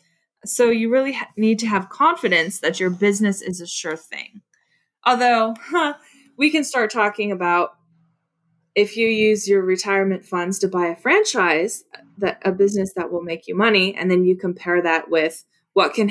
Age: 20-39